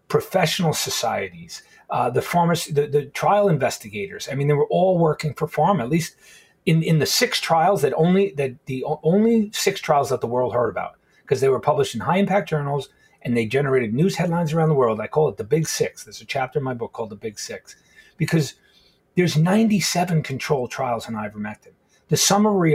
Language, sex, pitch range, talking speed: English, male, 130-195 Hz, 200 wpm